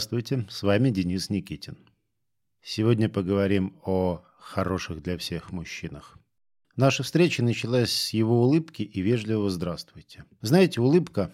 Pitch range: 100-125 Hz